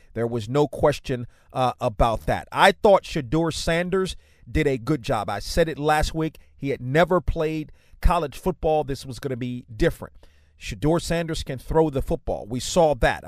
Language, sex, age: English, male, 40-59